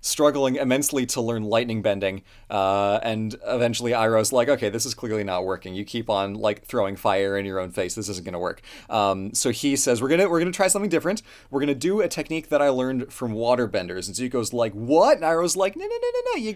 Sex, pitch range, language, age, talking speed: male, 105-140 Hz, English, 30-49, 245 wpm